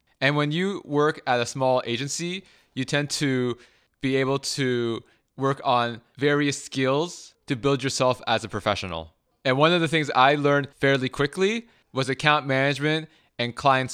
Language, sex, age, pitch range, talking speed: English, male, 20-39, 115-140 Hz, 165 wpm